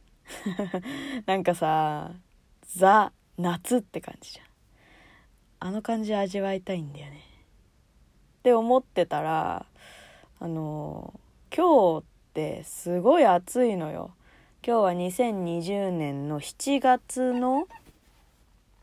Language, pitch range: Japanese, 175-260 Hz